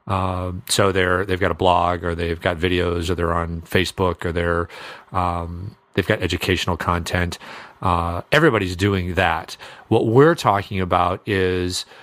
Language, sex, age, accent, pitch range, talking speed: English, male, 40-59, American, 90-110 Hz, 155 wpm